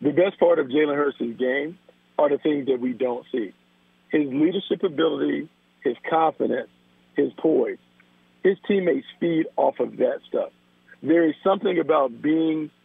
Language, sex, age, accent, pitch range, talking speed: English, male, 50-69, American, 125-180 Hz, 155 wpm